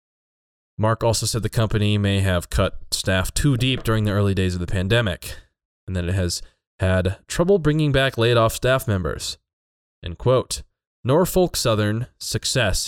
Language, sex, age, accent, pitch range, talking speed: English, male, 20-39, American, 90-110 Hz, 160 wpm